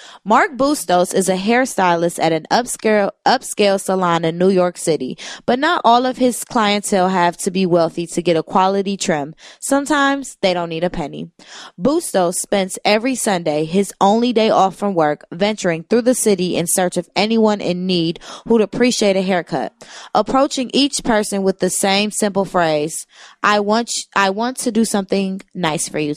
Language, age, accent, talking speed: English, 20-39, American, 175 wpm